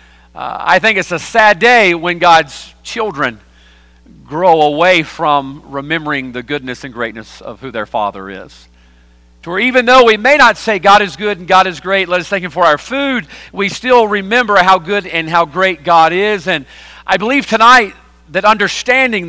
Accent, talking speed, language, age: American, 190 wpm, English, 40-59